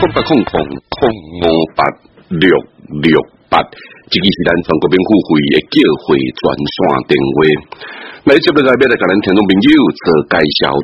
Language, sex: Chinese, male